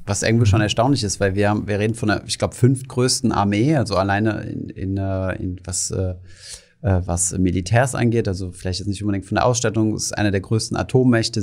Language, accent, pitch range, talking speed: German, German, 100-115 Hz, 210 wpm